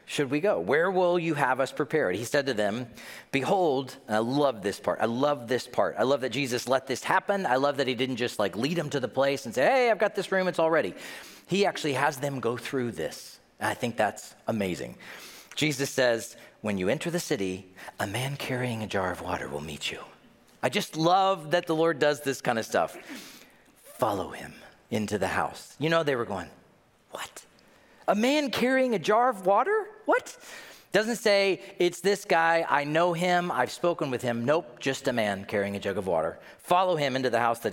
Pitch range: 120-180 Hz